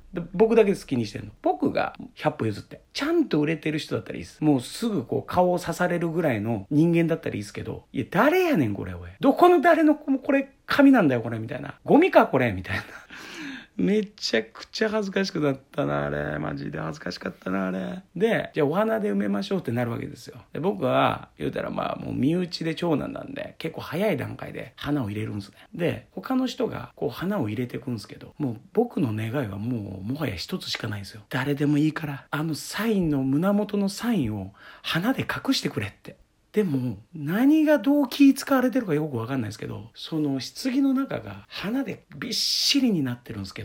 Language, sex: Japanese, male